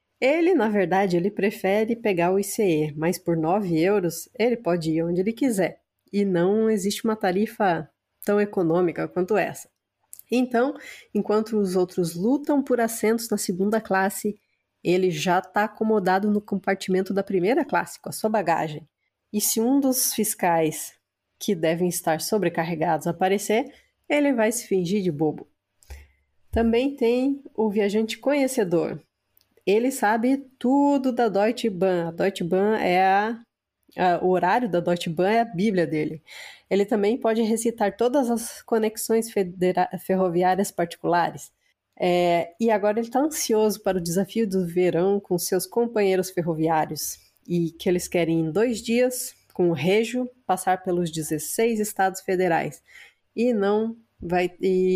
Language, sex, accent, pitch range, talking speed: Portuguese, female, Brazilian, 175-225 Hz, 150 wpm